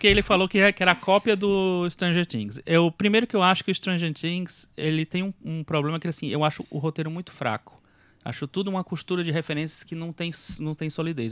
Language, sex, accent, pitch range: Portuguese, male, Brazilian, 140-185 Hz